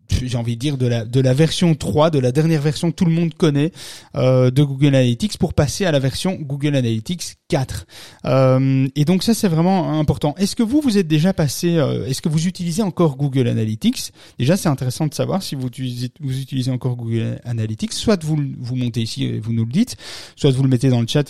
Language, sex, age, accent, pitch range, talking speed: French, male, 30-49, French, 120-160 Hz, 230 wpm